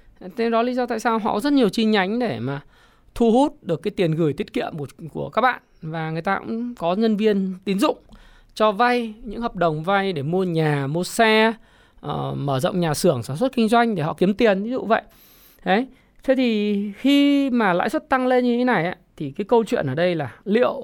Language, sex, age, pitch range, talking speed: Vietnamese, male, 20-39, 155-210 Hz, 230 wpm